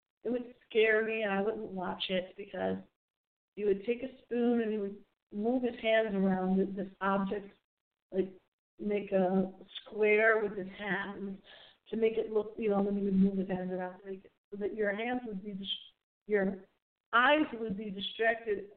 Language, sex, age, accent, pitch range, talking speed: English, female, 40-59, American, 190-220 Hz, 175 wpm